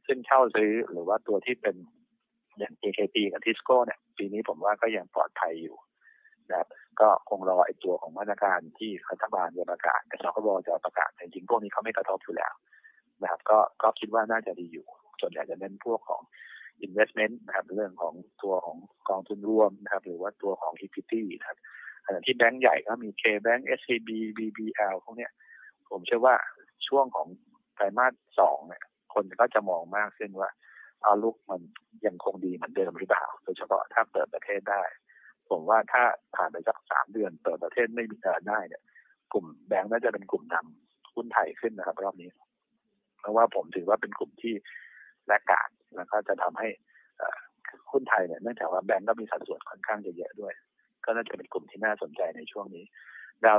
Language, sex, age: Thai, male, 60-79